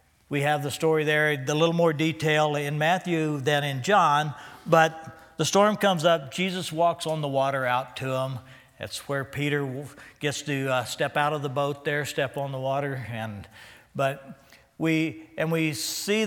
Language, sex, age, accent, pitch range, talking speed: English, male, 60-79, American, 135-160 Hz, 180 wpm